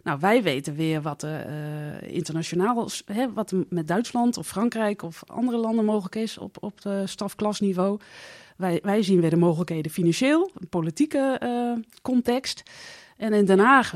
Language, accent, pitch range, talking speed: Dutch, Dutch, 175-220 Hz, 160 wpm